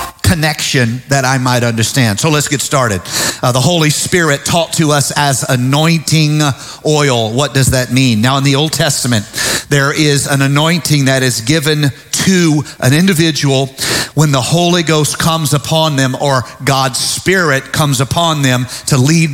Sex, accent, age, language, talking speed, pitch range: male, American, 50-69, English, 165 wpm, 130-155 Hz